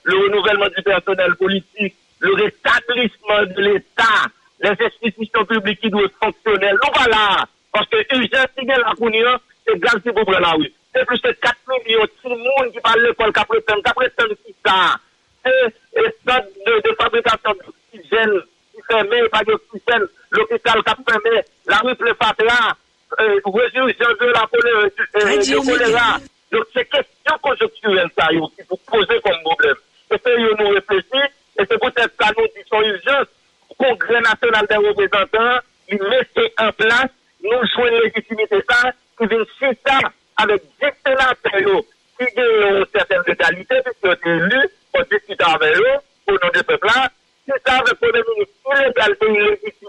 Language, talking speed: English, 155 wpm